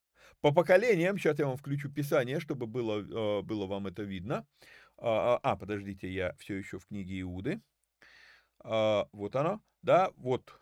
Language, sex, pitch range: Russian, male, 120-180 Hz